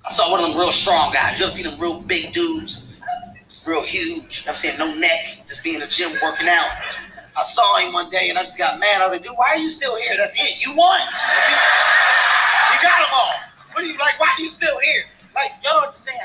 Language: English